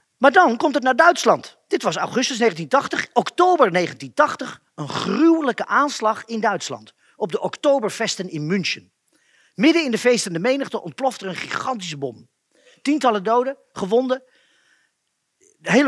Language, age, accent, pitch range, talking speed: Dutch, 40-59, Dutch, 195-270 Hz, 135 wpm